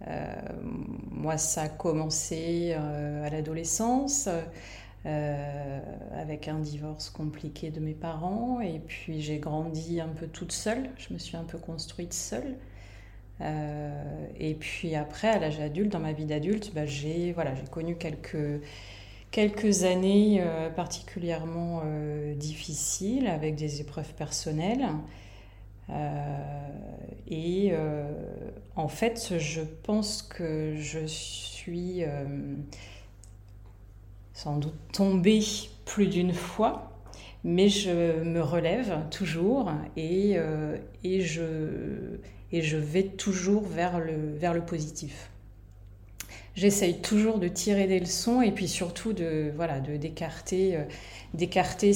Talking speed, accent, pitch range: 120 wpm, French, 150-180 Hz